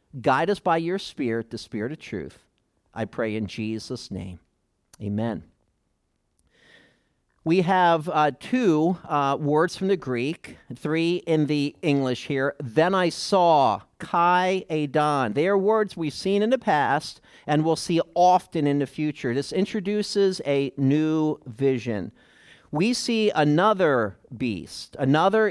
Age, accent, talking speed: 50-69, American, 140 wpm